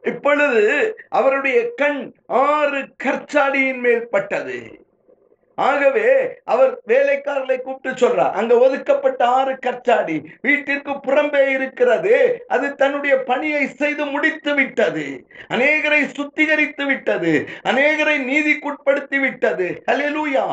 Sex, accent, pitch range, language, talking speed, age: male, native, 245-290 Hz, Tamil, 60 wpm, 50-69